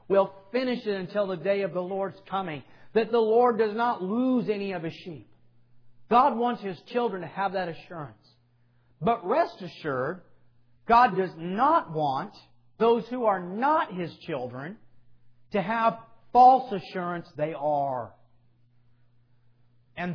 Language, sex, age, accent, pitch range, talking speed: English, male, 40-59, American, 120-205 Hz, 145 wpm